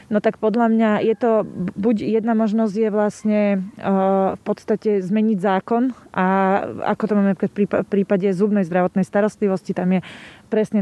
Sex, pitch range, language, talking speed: female, 185-210 Hz, Slovak, 155 wpm